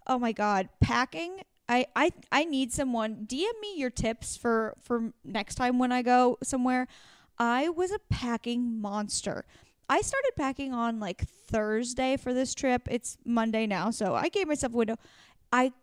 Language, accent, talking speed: English, American, 170 wpm